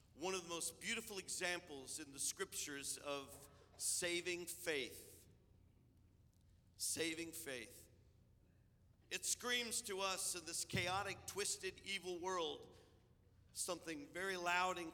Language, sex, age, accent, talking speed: English, male, 50-69, American, 115 wpm